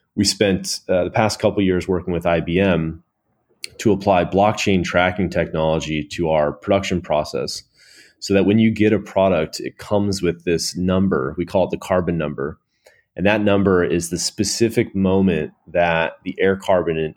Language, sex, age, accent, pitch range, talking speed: English, male, 30-49, American, 85-95 Hz, 175 wpm